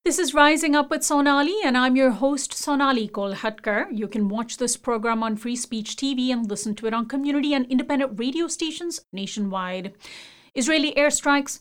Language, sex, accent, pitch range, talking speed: English, female, Indian, 210-280 Hz, 175 wpm